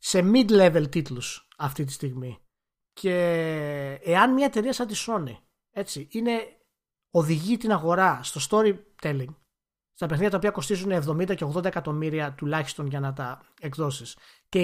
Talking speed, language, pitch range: 135 wpm, Greek, 145-215 Hz